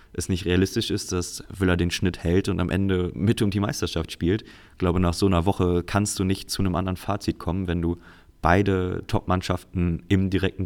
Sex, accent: male, German